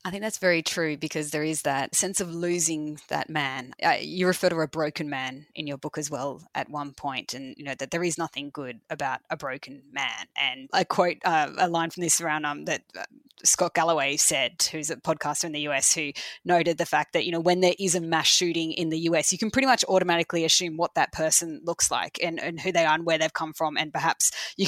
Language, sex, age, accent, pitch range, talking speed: English, female, 20-39, Australian, 155-180 Hz, 245 wpm